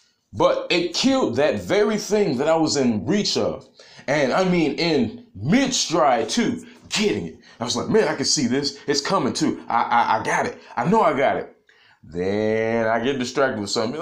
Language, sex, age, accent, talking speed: English, male, 20-39, American, 200 wpm